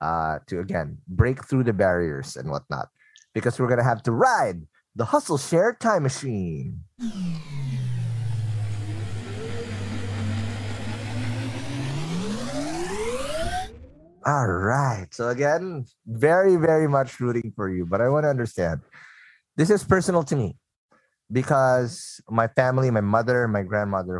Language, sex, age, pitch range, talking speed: English, male, 30-49, 95-130 Hz, 120 wpm